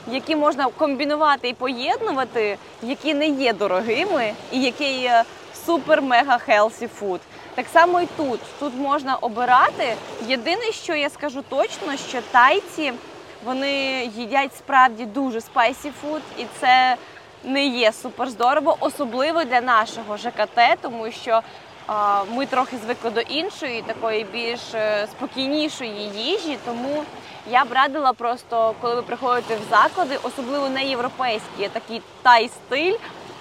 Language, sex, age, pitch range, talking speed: Ukrainian, female, 20-39, 240-300 Hz, 120 wpm